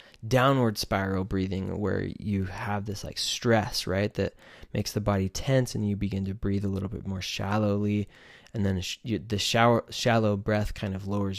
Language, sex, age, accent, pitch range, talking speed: English, male, 20-39, American, 100-120 Hz, 180 wpm